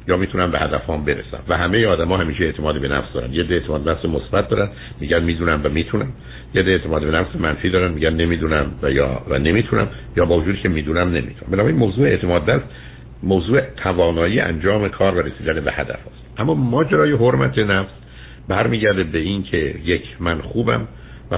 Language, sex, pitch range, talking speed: Persian, male, 75-95 Hz, 185 wpm